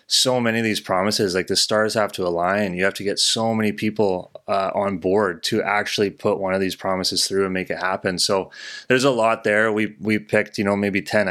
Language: English